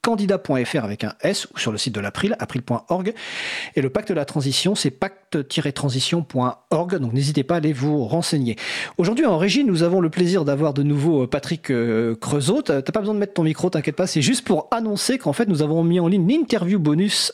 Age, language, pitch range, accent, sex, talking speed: 40-59, French, 140-195 Hz, French, male, 210 wpm